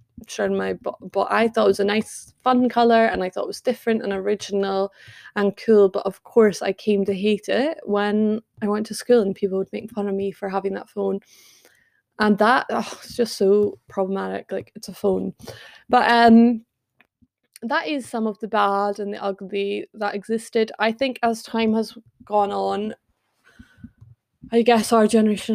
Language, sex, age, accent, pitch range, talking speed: English, female, 20-39, British, 195-225 Hz, 185 wpm